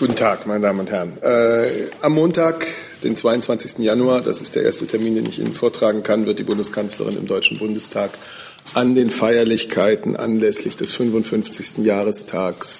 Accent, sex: German, male